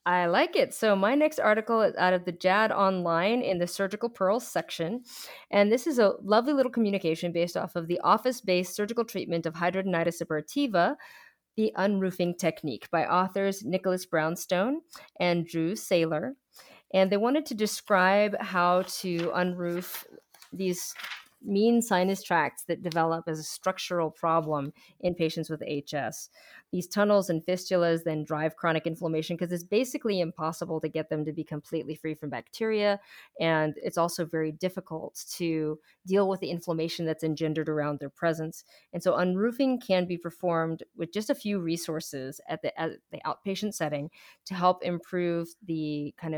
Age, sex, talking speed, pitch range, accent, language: 30-49, female, 160 wpm, 160-200 Hz, American, English